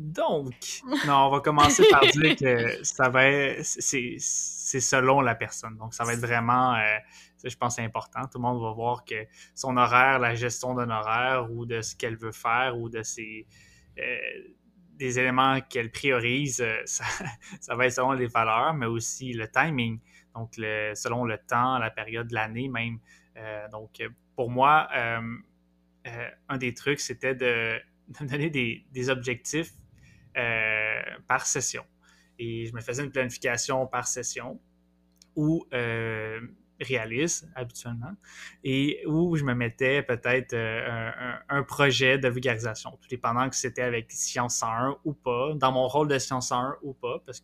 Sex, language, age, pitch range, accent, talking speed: male, French, 20-39, 115-135 Hz, Canadian, 170 wpm